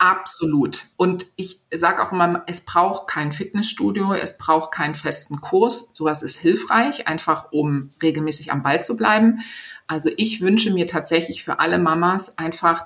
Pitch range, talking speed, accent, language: 160-195 Hz, 160 wpm, German, German